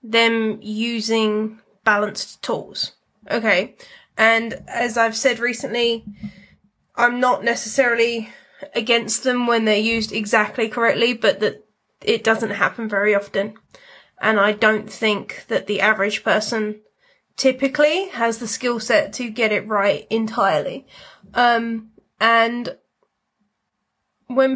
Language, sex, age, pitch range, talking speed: English, female, 20-39, 215-240 Hz, 115 wpm